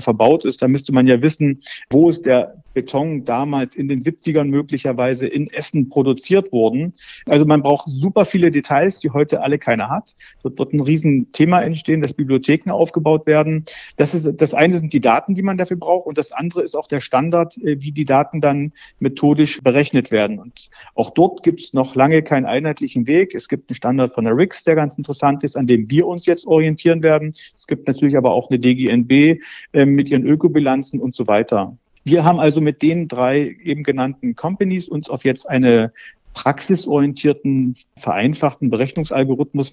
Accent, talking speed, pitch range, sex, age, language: German, 185 wpm, 135-160 Hz, male, 50-69, German